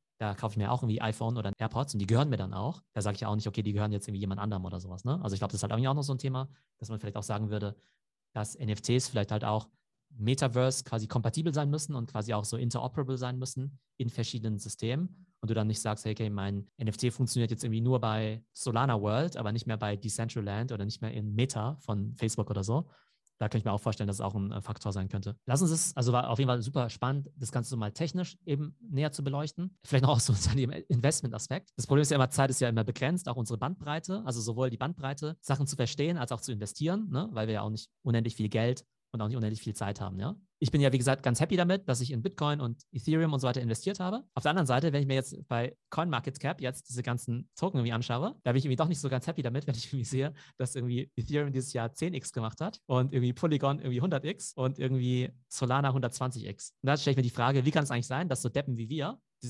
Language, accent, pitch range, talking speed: German, German, 110-145 Hz, 260 wpm